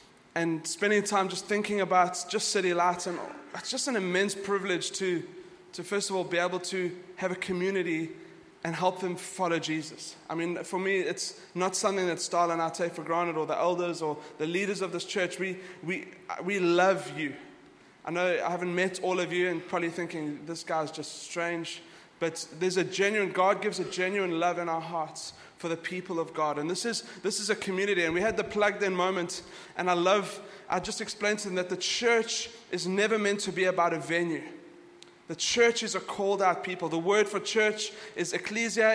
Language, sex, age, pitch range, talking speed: English, male, 20-39, 175-210 Hz, 210 wpm